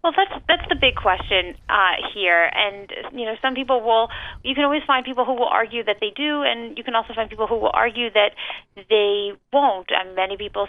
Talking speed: 225 wpm